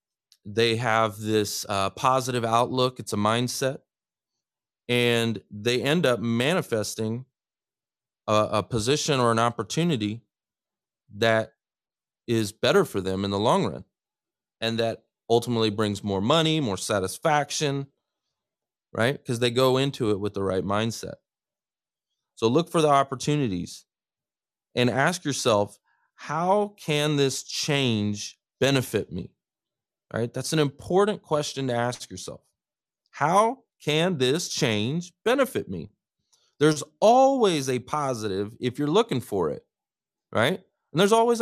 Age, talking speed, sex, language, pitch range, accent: 30-49, 130 wpm, male, English, 110-150 Hz, American